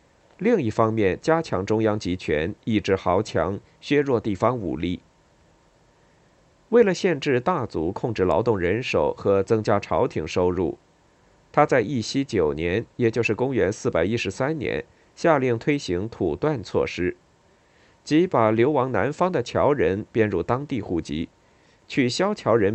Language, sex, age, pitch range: Chinese, male, 50-69, 95-145 Hz